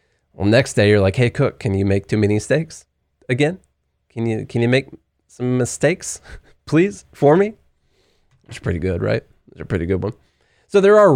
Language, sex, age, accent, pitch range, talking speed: English, male, 20-39, American, 105-145 Hz, 195 wpm